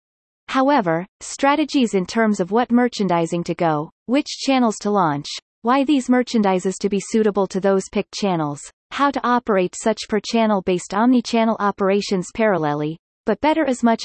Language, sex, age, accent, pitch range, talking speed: English, female, 30-49, American, 185-235 Hz, 155 wpm